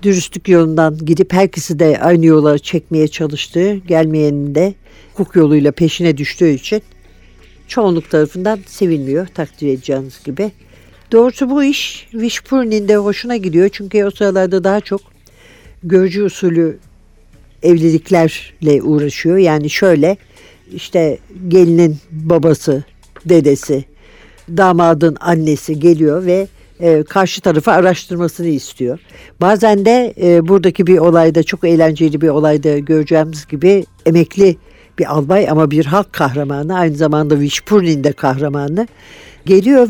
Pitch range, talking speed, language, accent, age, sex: 155-200 Hz, 115 wpm, Turkish, native, 60-79, female